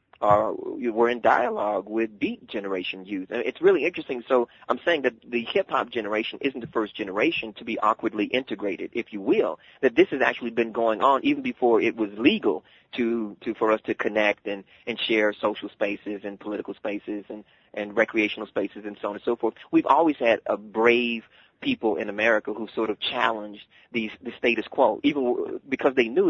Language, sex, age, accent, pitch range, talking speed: English, male, 30-49, American, 105-170 Hz, 200 wpm